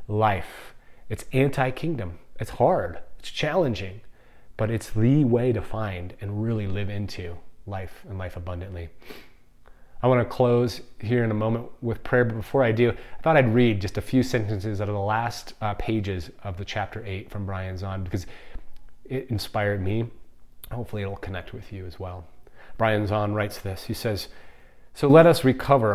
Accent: American